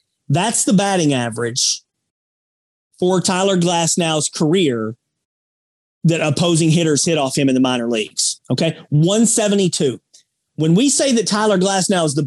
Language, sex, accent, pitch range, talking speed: English, male, American, 150-210 Hz, 135 wpm